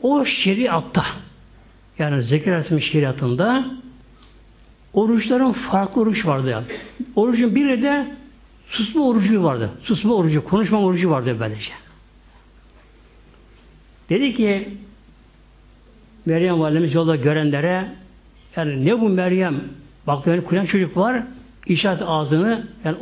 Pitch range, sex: 150-215 Hz, male